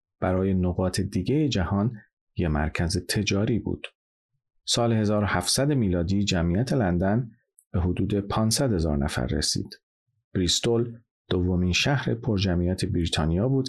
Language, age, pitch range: Persian, 40-59, 95-120 Hz